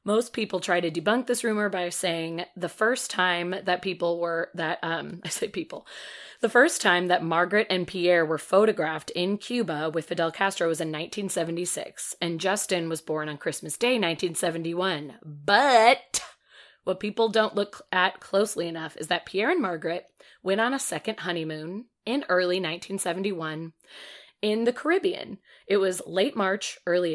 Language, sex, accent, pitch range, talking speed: English, female, American, 170-215 Hz, 165 wpm